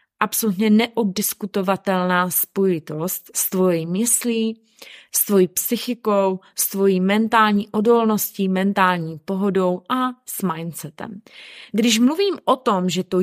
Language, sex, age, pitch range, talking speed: Czech, female, 20-39, 175-215 Hz, 110 wpm